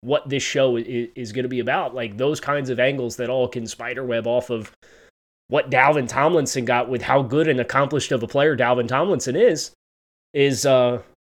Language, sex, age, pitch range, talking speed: English, male, 20-39, 115-135 Hz, 190 wpm